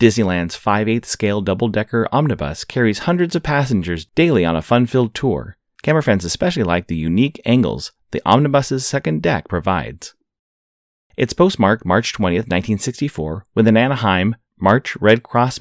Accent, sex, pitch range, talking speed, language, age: American, male, 95-120 Hz, 155 wpm, English, 30-49